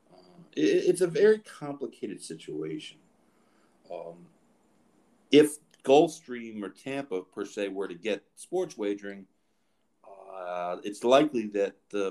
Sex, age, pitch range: male, 40-59, 90-120 Hz